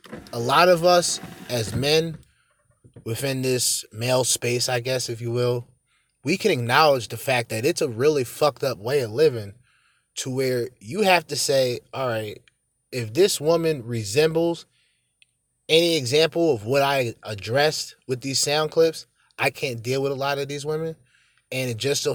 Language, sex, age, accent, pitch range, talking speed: English, male, 20-39, American, 115-150 Hz, 175 wpm